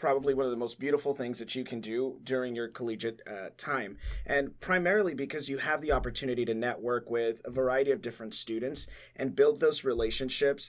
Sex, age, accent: male, 30-49, American